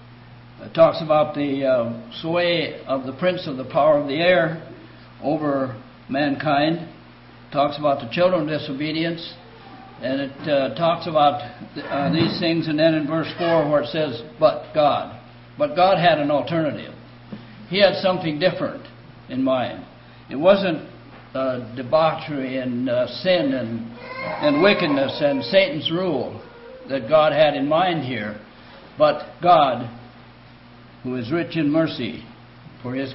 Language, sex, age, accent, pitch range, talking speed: English, male, 60-79, American, 125-170 Hz, 150 wpm